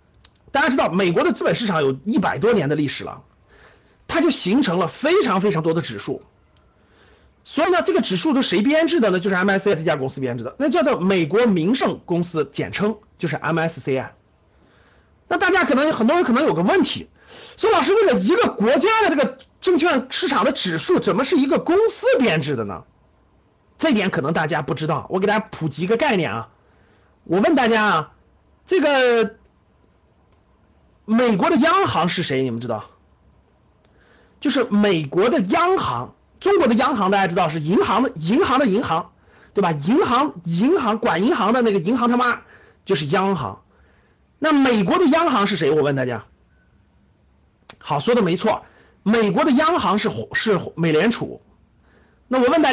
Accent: native